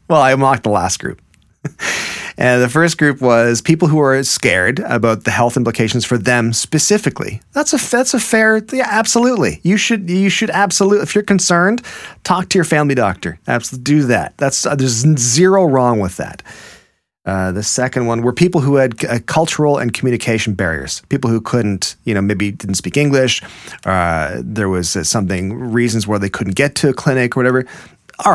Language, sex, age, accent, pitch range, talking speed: English, male, 30-49, American, 100-145 Hz, 190 wpm